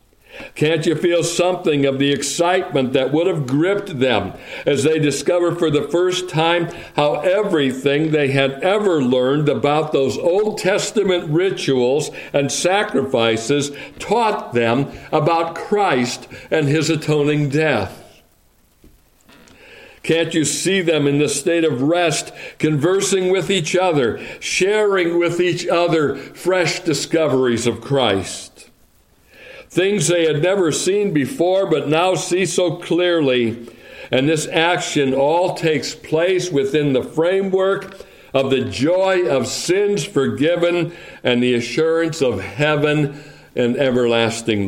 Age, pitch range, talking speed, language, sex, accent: 60-79, 125-175 Hz, 125 wpm, English, male, American